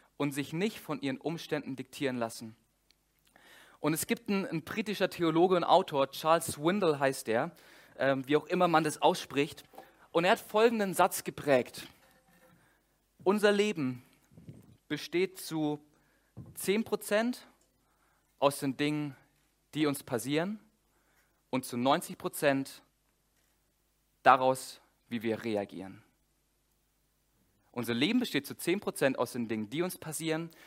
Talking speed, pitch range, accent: 125 wpm, 125-165 Hz, German